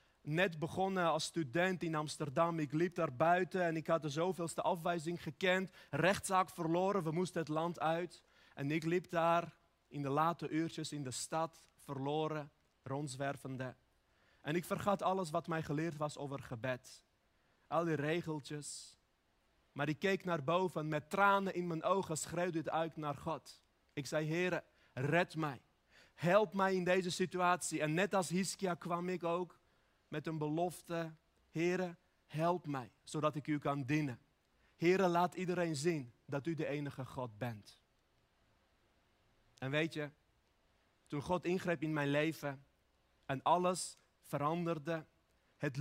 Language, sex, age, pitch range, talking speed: Dutch, male, 30-49, 150-180 Hz, 150 wpm